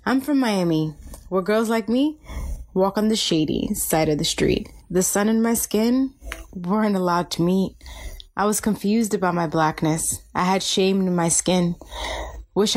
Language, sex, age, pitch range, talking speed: English, female, 20-39, 175-215 Hz, 175 wpm